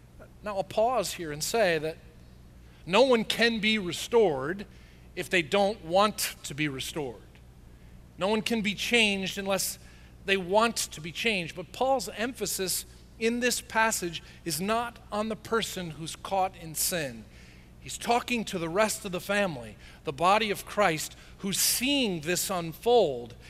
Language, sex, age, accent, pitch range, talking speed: English, male, 40-59, American, 130-210 Hz, 155 wpm